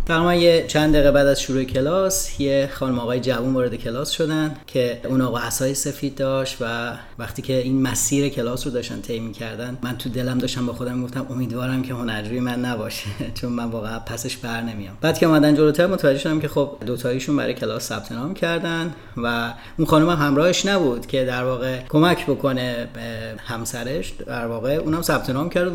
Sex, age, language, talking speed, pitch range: male, 30-49, Persian, 190 wpm, 120-150 Hz